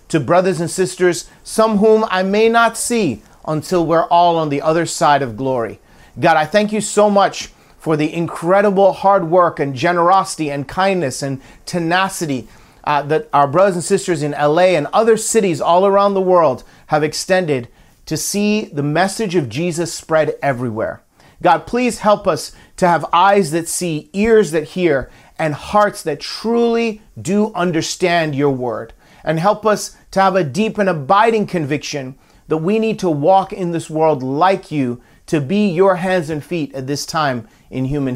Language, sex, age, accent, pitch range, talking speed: English, male, 40-59, American, 145-195 Hz, 175 wpm